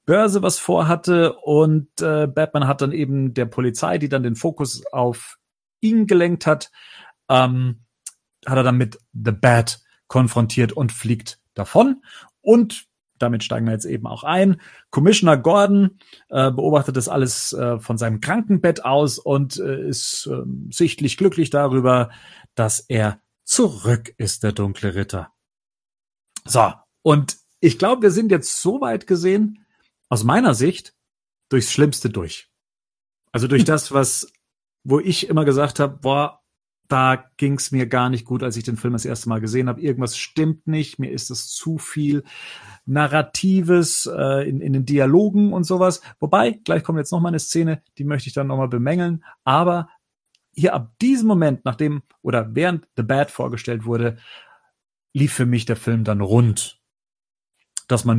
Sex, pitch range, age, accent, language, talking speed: male, 120-160 Hz, 40-59, German, German, 160 wpm